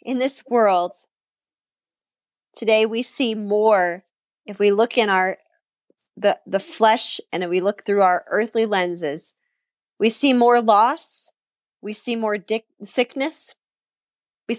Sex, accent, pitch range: female, American, 205-250 Hz